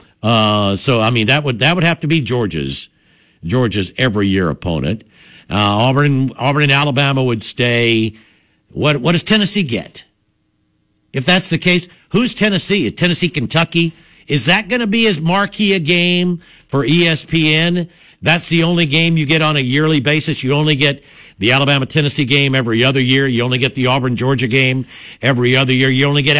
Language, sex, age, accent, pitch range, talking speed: English, male, 60-79, American, 125-170 Hz, 180 wpm